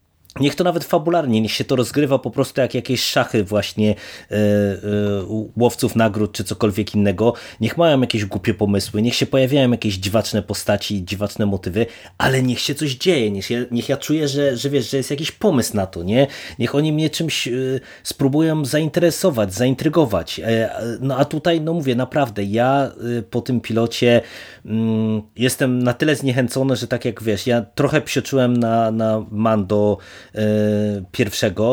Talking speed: 170 wpm